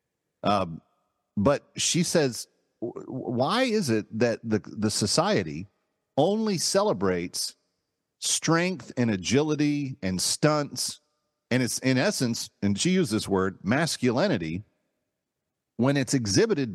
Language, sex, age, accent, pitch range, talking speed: English, male, 50-69, American, 115-175 Hz, 110 wpm